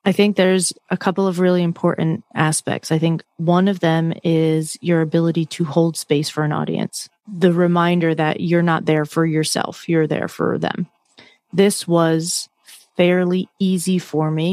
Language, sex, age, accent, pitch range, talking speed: English, female, 30-49, American, 160-190 Hz, 170 wpm